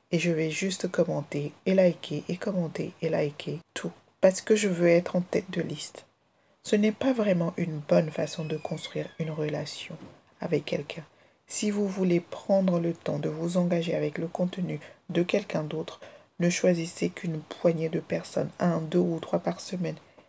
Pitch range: 160-190 Hz